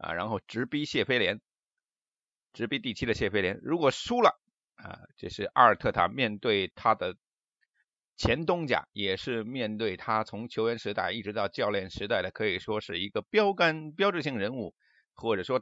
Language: Chinese